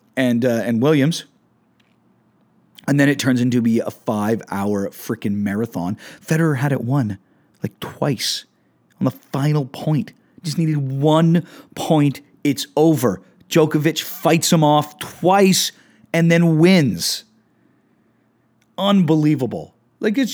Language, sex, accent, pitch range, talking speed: English, male, American, 145-200 Hz, 125 wpm